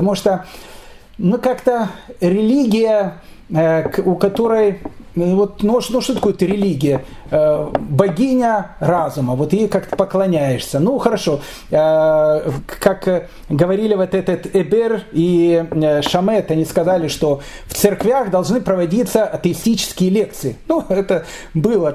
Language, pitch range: Russian, 155-210 Hz